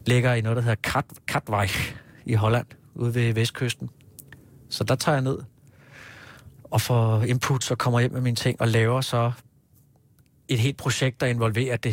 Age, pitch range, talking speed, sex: 30-49, 115-135 Hz, 175 wpm, male